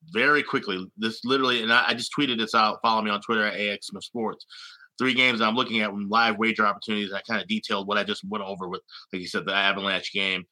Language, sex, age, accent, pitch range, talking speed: English, male, 30-49, American, 105-125 Hz, 240 wpm